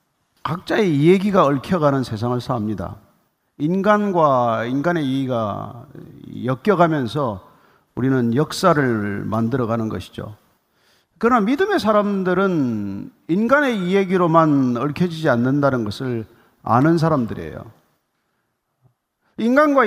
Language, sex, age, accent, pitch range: Korean, male, 40-59, native, 125-200 Hz